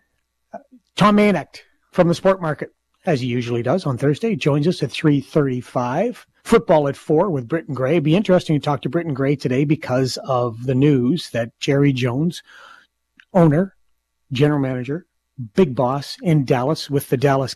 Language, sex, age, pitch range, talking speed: English, male, 40-59, 130-165 Hz, 170 wpm